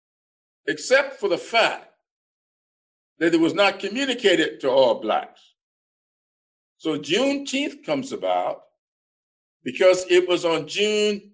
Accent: American